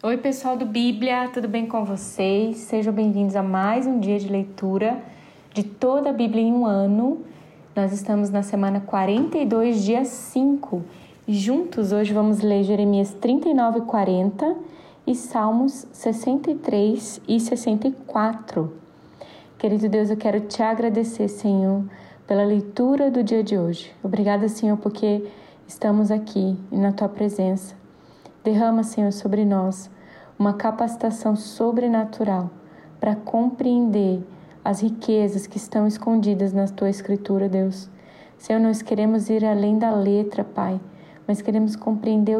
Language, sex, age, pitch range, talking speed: Portuguese, female, 20-39, 200-230 Hz, 130 wpm